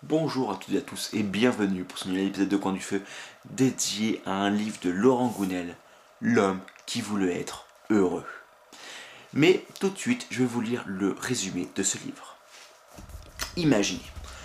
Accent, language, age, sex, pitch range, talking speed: French, French, 30-49, male, 95-135 Hz, 175 wpm